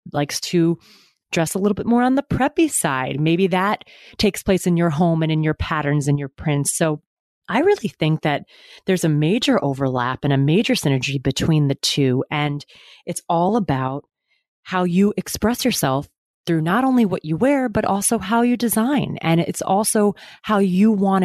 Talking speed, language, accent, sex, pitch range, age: 185 wpm, English, American, female, 155-195 Hz, 30-49